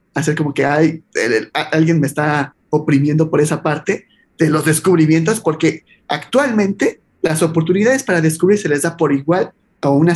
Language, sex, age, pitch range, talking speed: Spanish, male, 30-49, 160-210 Hz, 175 wpm